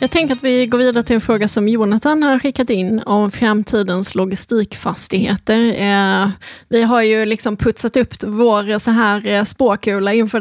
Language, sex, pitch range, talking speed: Swedish, female, 200-235 Hz, 155 wpm